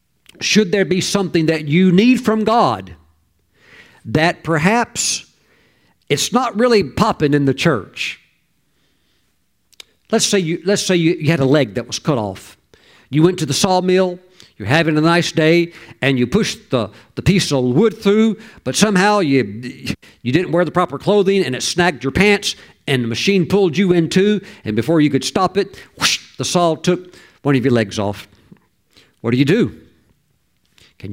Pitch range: 130-195 Hz